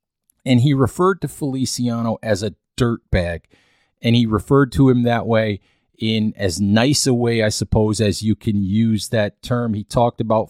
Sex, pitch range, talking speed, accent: male, 105-120 Hz, 175 wpm, American